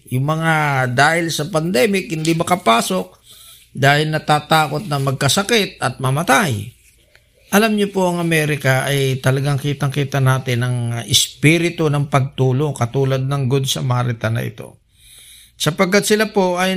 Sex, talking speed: male, 130 wpm